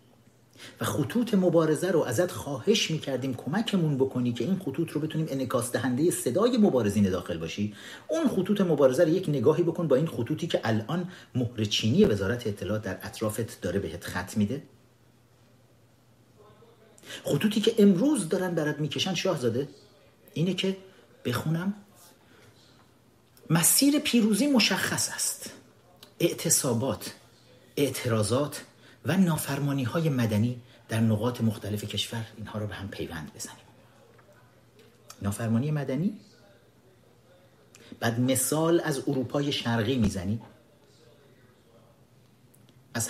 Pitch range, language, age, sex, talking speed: 115-150 Hz, Persian, 40-59, male, 110 wpm